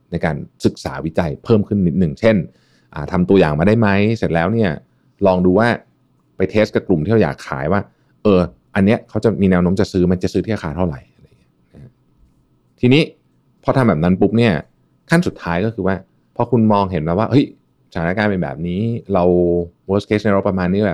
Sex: male